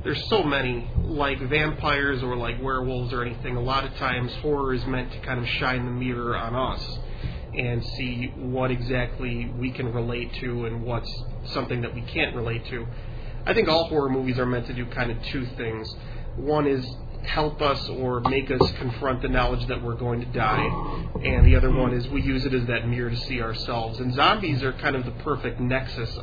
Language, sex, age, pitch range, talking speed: English, male, 30-49, 120-130 Hz, 210 wpm